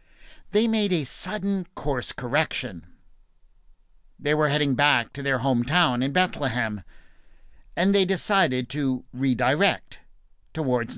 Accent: American